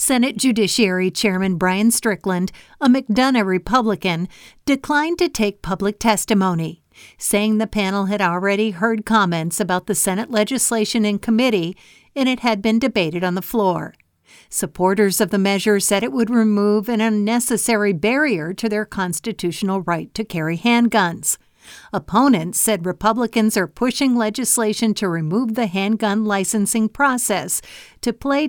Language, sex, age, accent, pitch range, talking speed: English, female, 50-69, American, 185-230 Hz, 140 wpm